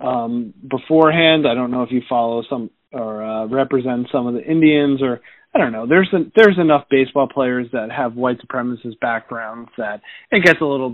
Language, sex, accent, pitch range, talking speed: English, male, American, 130-155 Hz, 195 wpm